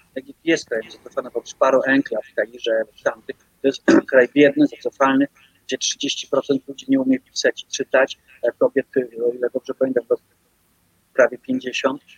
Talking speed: 150 wpm